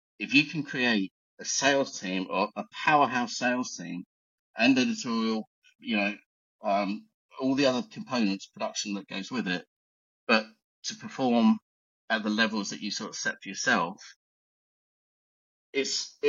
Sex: male